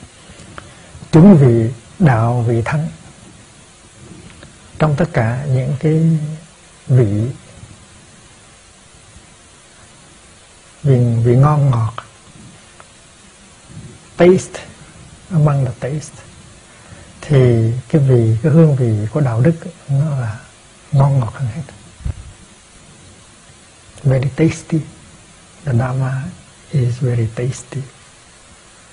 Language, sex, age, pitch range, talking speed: Vietnamese, male, 60-79, 115-155 Hz, 85 wpm